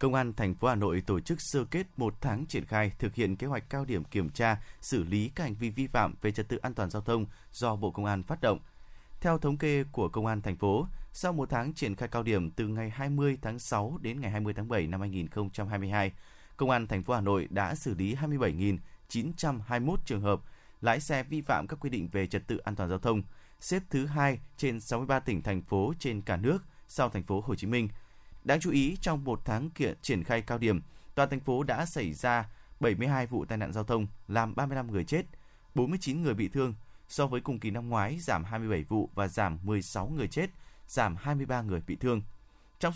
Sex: male